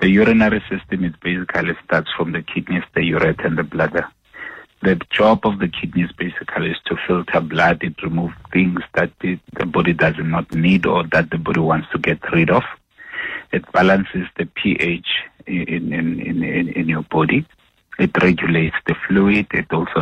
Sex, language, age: male, English, 60-79